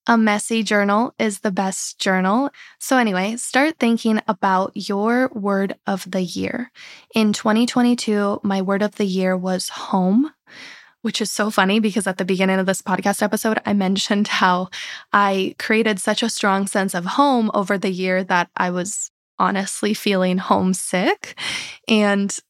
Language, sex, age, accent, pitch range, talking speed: English, female, 20-39, American, 190-230 Hz, 155 wpm